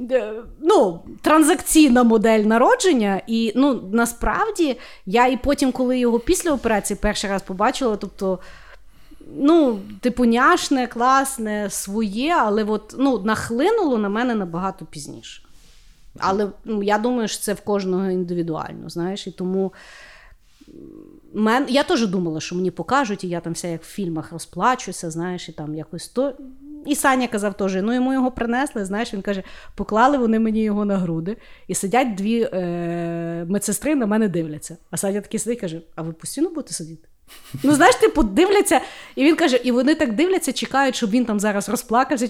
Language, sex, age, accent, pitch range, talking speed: Ukrainian, female, 30-49, native, 190-270 Hz, 165 wpm